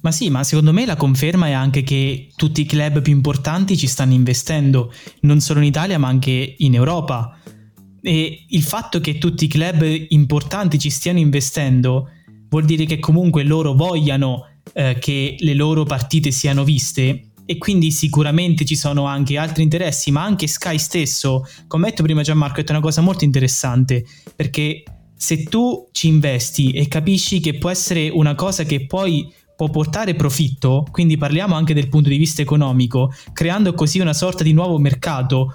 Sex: male